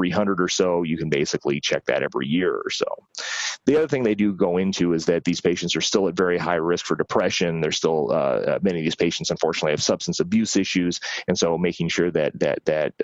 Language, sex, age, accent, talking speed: Italian, male, 30-49, American, 230 wpm